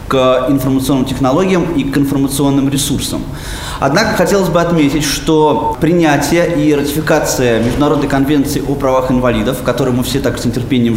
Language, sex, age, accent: Russian, male, 20-39, native